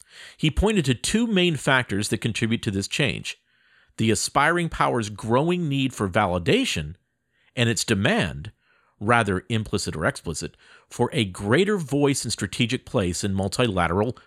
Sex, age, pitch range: male, 50-69, 105-140 Hz